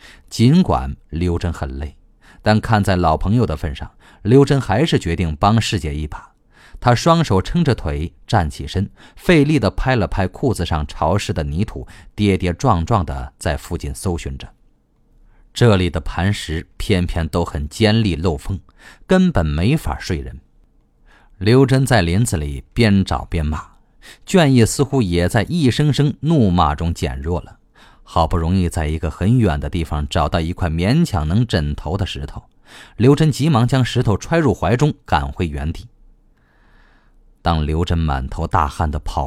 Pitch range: 80-110 Hz